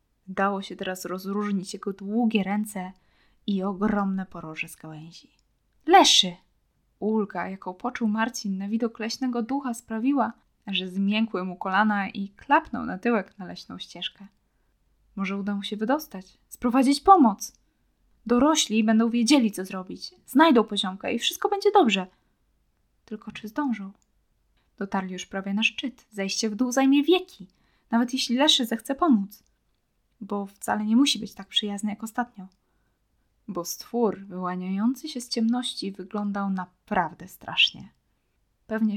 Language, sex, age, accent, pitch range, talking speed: Polish, female, 10-29, native, 190-235 Hz, 135 wpm